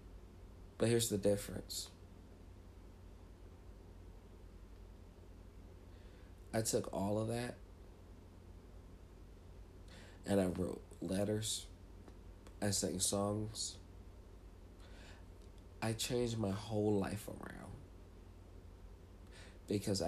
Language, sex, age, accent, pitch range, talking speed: English, male, 50-69, American, 90-100 Hz, 70 wpm